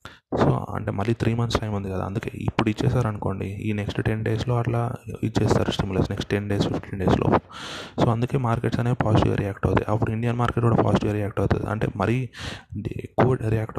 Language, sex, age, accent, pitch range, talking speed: Telugu, male, 20-39, native, 105-120 Hz, 180 wpm